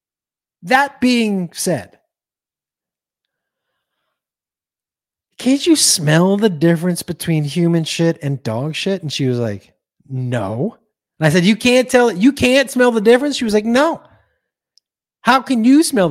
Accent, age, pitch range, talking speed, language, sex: American, 30-49, 155-245 Hz, 145 wpm, English, male